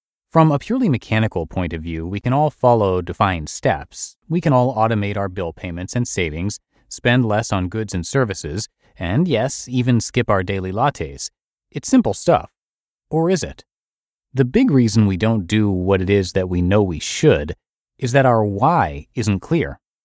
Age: 30-49